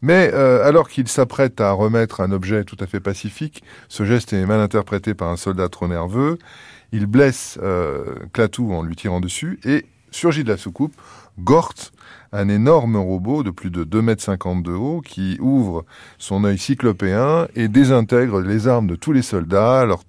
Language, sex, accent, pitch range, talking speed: French, male, French, 95-125 Hz, 180 wpm